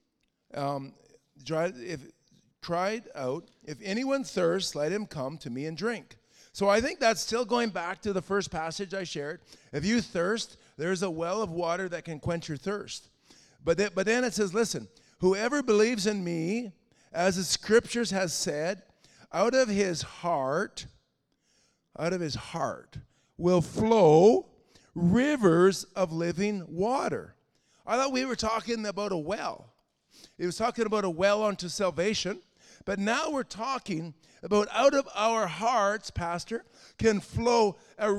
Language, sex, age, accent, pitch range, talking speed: English, male, 50-69, American, 170-230 Hz, 155 wpm